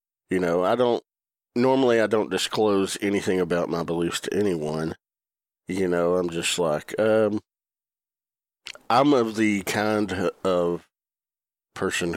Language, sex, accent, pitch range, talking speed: English, male, American, 90-110 Hz, 130 wpm